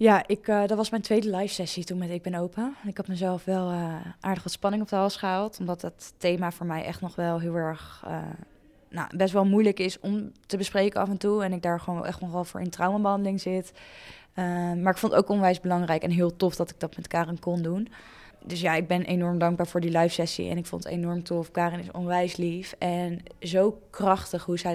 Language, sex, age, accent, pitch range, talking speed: Dutch, female, 10-29, Dutch, 170-190 Hz, 240 wpm